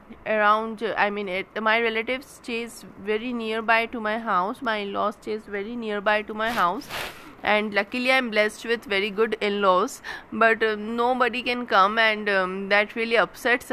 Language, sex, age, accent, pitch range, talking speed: Hindi, female, 20-39, native, 205-245 Hz, 180 wpm